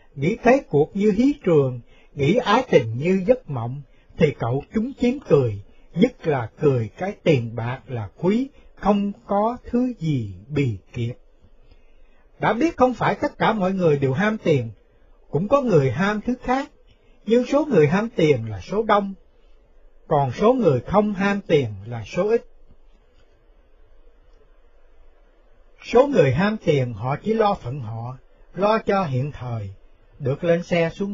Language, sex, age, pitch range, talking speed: Vietnamese, male, 60-79, 135-220 Hz, 160 wpm